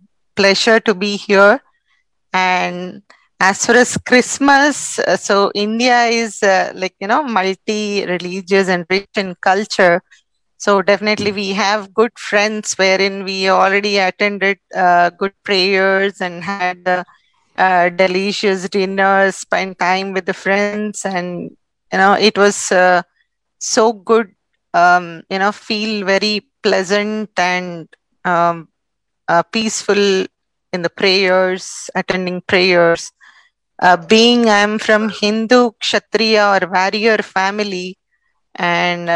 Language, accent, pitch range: Russian, Indian, 185-205 Hz